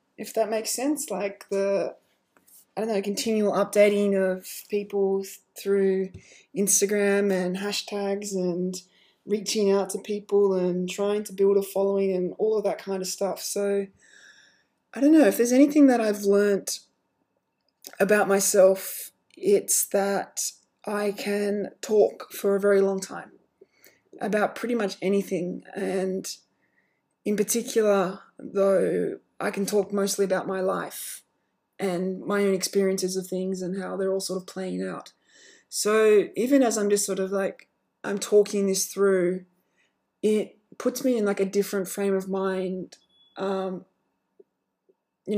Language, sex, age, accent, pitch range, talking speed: English, female, 20-39, Australian, 195-210 Hz, 145 wpm